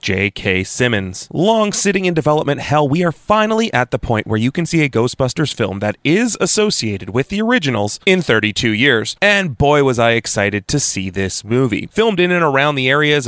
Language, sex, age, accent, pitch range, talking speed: English, male, 30-49, American, 115-160 Hz, 200 wpm